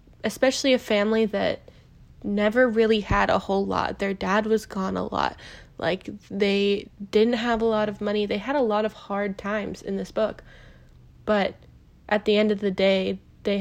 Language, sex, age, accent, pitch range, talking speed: English, female, 20-39, American, 200-220 Hz, 185 wpm